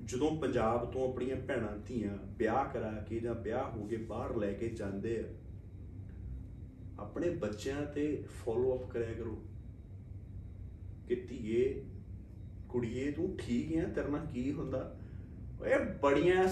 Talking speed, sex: 135 wpm, male